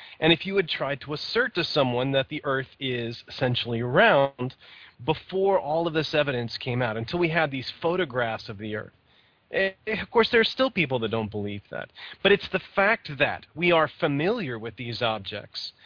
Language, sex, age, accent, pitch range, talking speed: English, male, 30-49, American, 120-160 Hz, 195 wpm